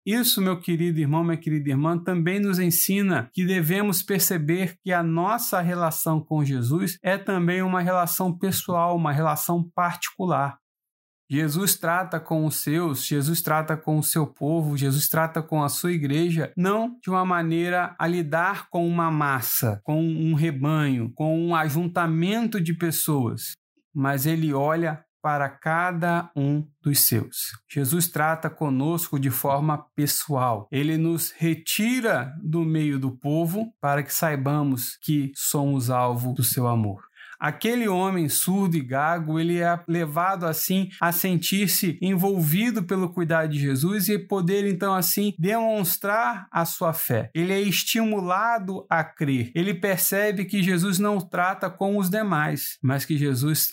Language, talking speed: Portuguese, 150 wpm